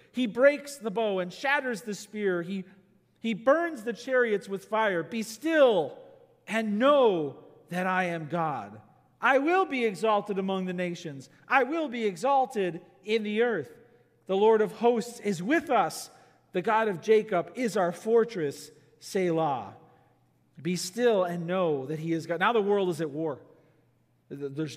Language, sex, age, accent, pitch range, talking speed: English, male, 40-59, American, 175-240 Hz, 160 wpm